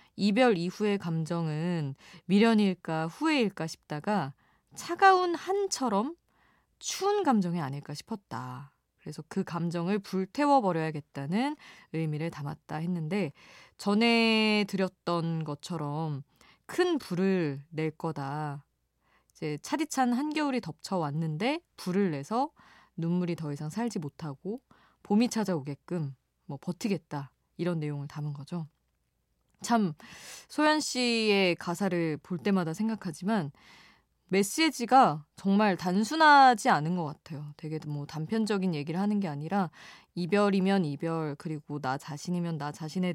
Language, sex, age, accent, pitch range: Korean, female, 20-39, native, 155-220 Hz